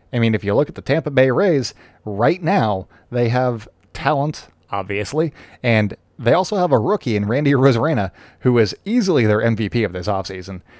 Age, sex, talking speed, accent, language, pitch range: 30-49, male, 185 wpm, American, English, 105-135 Hz